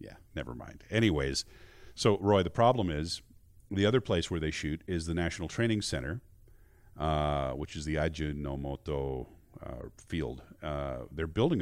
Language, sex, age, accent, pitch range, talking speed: English, male, 40-59, American, 75-100 Hz, 155 wpm